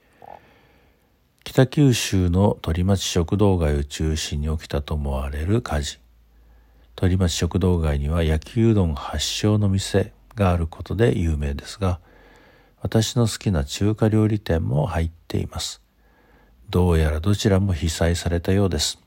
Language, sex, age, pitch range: Japanese, male, 50-69, 80-105 Hz